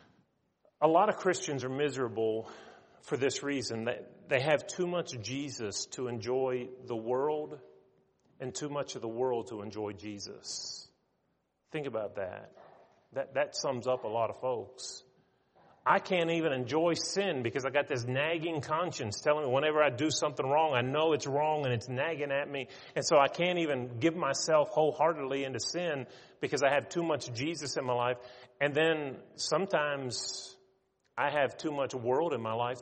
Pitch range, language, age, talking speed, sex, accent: 125-160 Hz, English, 30-49, 175 wpm, male, American